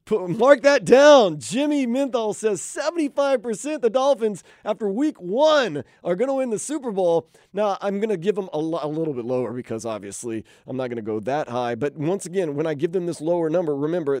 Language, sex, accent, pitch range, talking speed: English, male, American, 130-215 Hz, 220 wpm